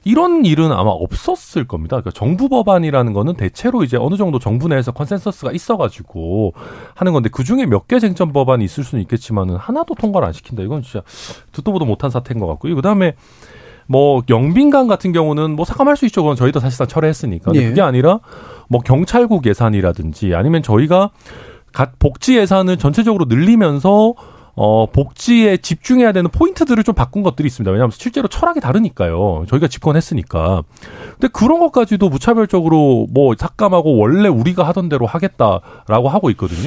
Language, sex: Korean, male